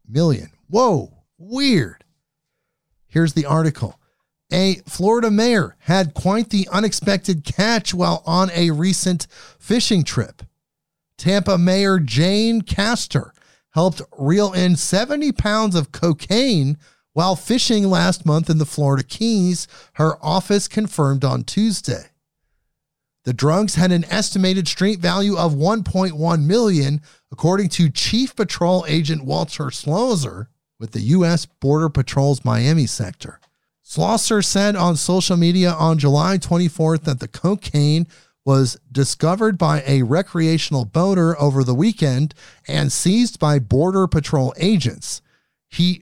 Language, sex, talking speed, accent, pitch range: English, male, 125 wpm, American, 145-190 Hz